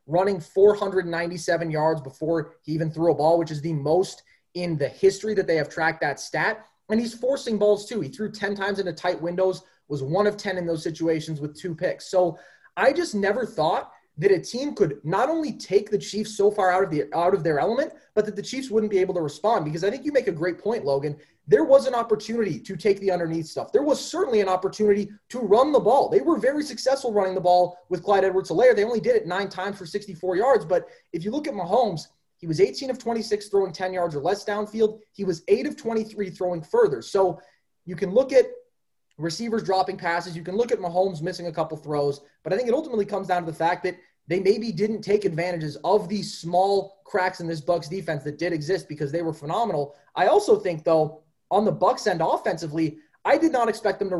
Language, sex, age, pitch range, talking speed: English, male, 20-39, 165-215 Hz, 230 wpm